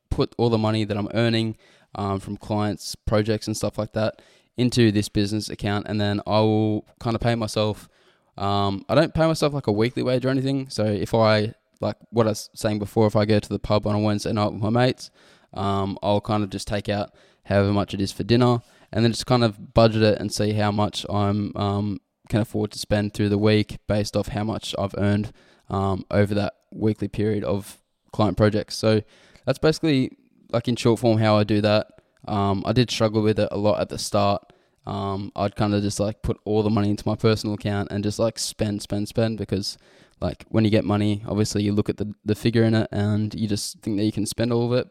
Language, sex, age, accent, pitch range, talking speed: English, male, 10-29, Australian, 105-115 Hz, 235 wpm